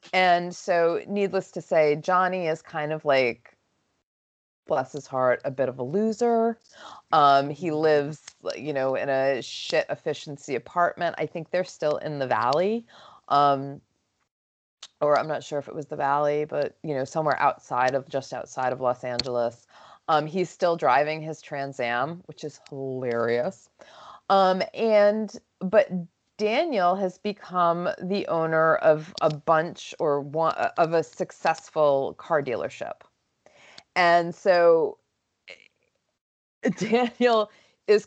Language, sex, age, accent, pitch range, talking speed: English, female, 30-49, American, 145-185 Hz, 140 wpm